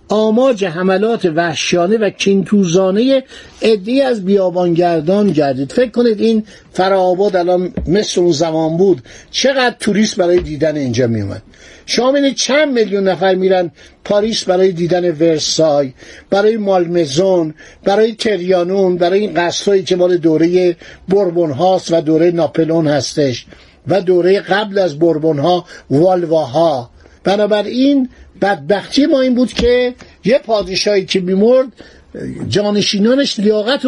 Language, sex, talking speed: Persian, male, 120 wpm